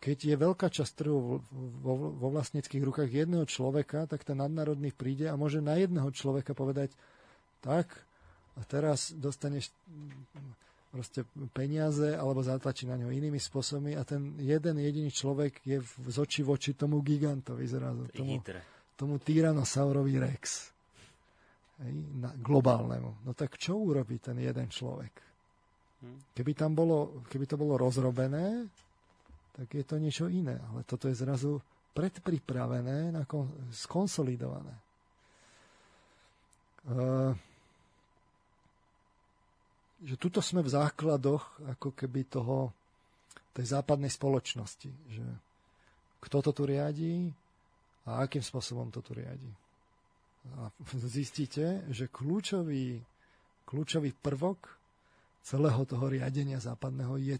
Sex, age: male, 40-59